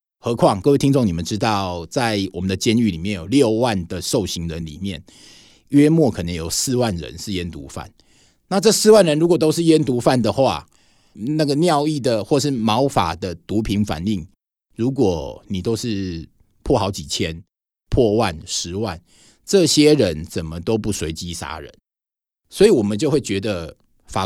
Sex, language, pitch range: male, Chinese, 90-120 Hz